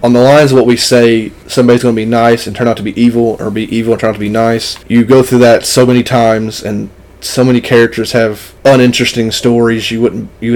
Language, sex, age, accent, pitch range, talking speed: English, male, 30-49, American, 115-125 Hz, 250 wpm